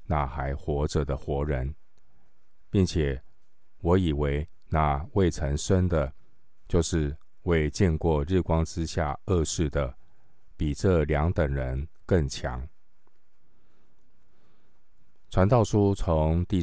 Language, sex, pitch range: Chinese, male, 75-90 Hz